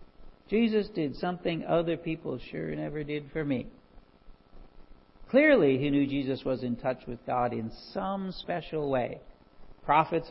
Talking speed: 140 wpm